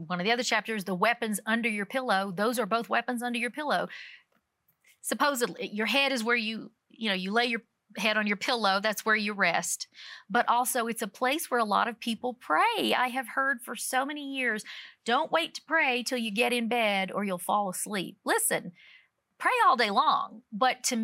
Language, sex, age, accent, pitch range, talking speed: English, female, 40-59, American, 210-260 Hz, 210 wpm